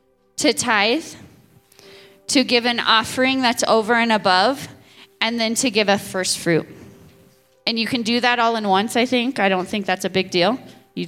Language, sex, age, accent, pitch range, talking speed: English, female, 20-39, American, 170-215 Hz, 190 wpm